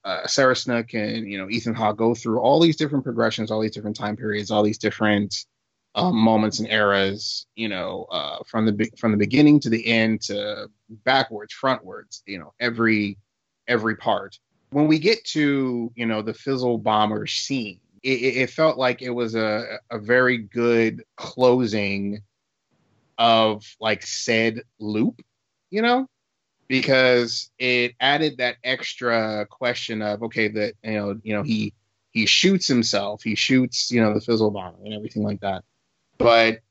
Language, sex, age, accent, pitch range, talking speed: English, male, 30-49, American, 105-125 Hz, 165 wpm